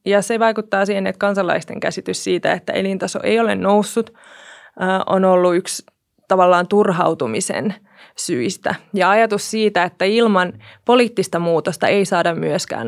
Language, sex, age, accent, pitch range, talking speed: Finnish, female, 20-39, native, 185-220 Hz, 135 wpm